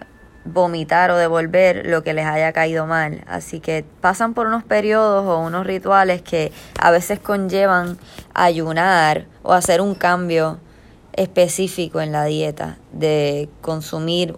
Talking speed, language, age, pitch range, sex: 140 wpm, Spanish, 20-39, 160-195 Hz, female